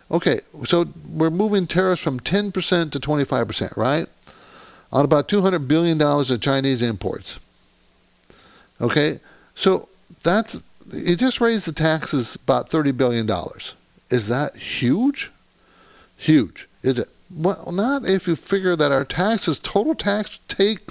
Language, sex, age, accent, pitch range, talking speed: English, male, 50-69, American, 145-205 Hz, 130 wpm